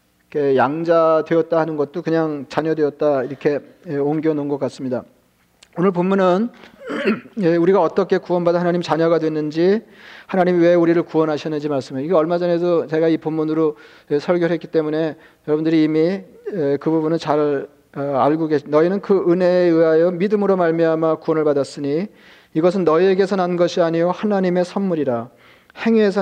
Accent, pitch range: native, 150-180 Hz